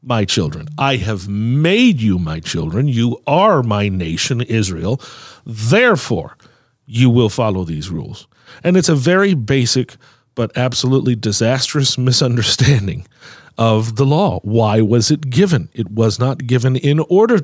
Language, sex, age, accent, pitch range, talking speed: English, male, 40-59, American, 115-145 Hz, 140 wpm